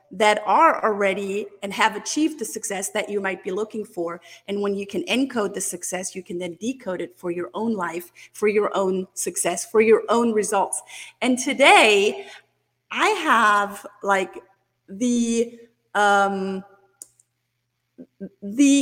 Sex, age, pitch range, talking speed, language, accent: female, 40-59, 195-240 Hz, 145 wpm, English, American